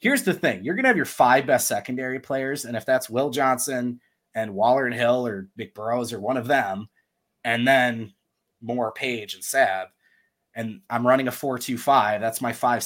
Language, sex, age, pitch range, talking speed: English, male, 30-49, 115-155 Hz, 205 wpm